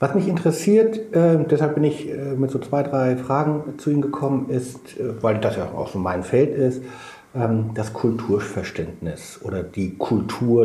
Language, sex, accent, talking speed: German, male, German, 160 wpm